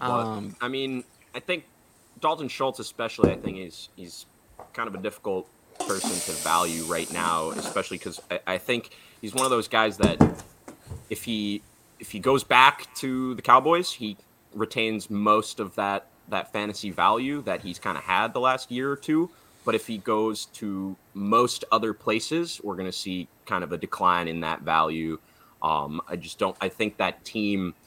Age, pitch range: 30-49, 90-120 Hz